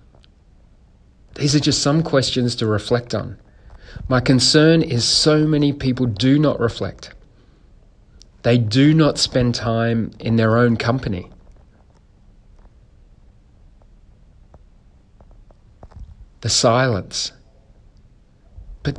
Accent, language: Australian, English